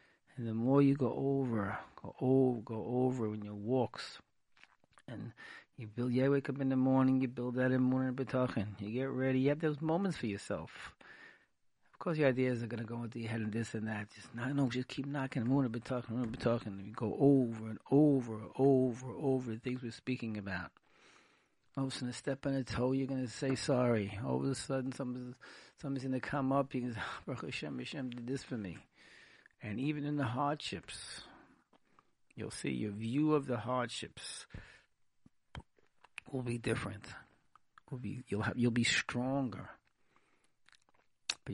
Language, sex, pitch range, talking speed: English, male, 115-135 Hz, 190 wpm